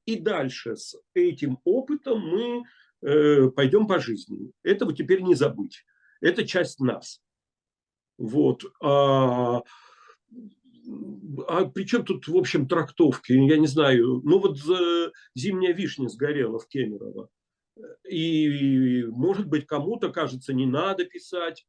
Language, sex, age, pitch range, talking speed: Russian, male, 50-69, 130-160 Hz, 120 wpm